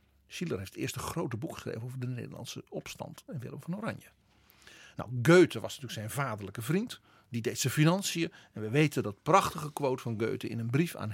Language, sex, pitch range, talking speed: Dutch, male, 110-155 Hz, 205 wpm